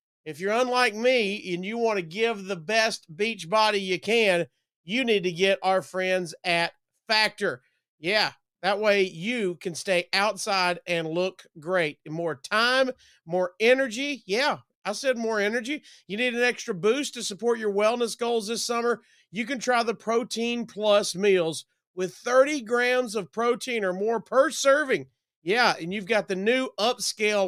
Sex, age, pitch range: male, 40-59, 185-235 Hz